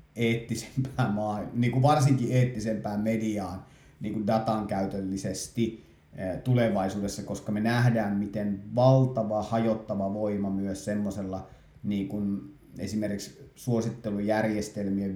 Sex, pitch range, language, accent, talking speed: male, 100-115 Hz, Finnish, native, 85 wpm